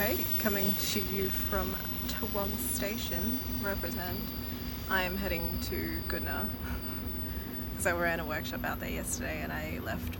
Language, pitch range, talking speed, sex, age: English, 85-95 Hz, 135 wpm, female, 20-39